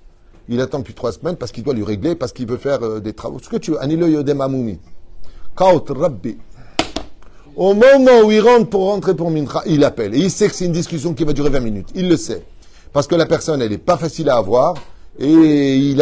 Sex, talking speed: male, 220 wpm